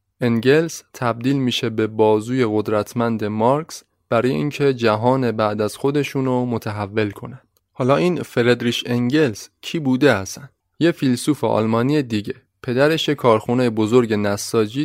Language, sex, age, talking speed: Persian, male, 20-39, 120 wpm